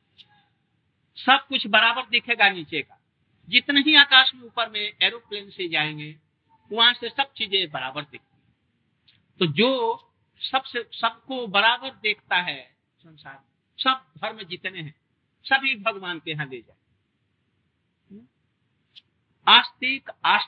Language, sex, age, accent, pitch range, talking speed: Hindi, male, 50-69, native, 170-250 Hz, 115 wpm